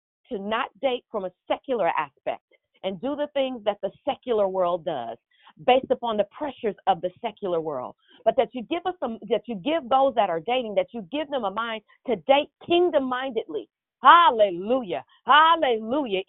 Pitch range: 215-295 Hz